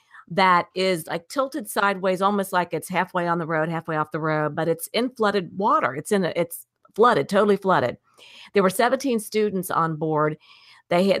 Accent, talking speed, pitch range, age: American, 195 wpm, 170-210 Hz, 50-69